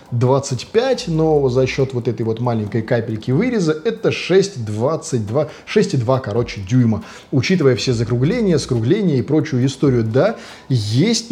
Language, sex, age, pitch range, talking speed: Russian, male, 20-39, 120-155 Hz, 120 wpm